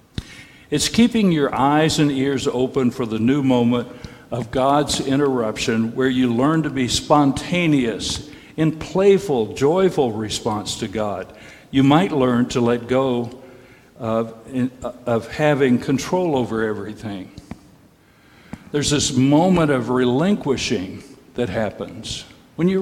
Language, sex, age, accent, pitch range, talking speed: English, male, 60-79, American, 115-145 Hz, 125 wpm